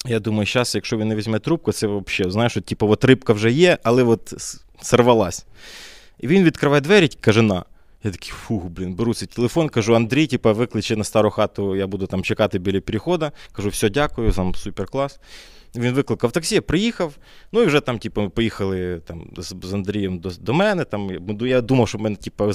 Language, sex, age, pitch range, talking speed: Ukrainian, male, 20-39, 100-135 Hz, 200 wpm